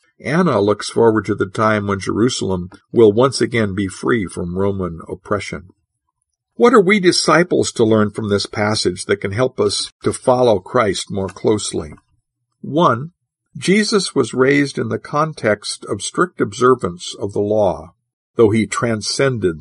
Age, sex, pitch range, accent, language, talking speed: 50-69, male, 95-130 Hz, American, English, 155 wpm